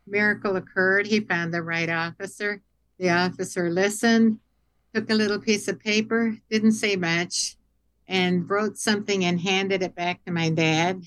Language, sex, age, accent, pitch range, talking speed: English, female, 60-79, American, 170-205 Hz, 155 wpm